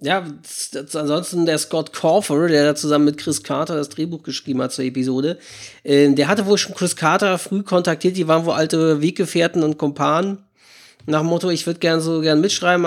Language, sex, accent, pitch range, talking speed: German, male, German, 145-175 Hz, 190 wpm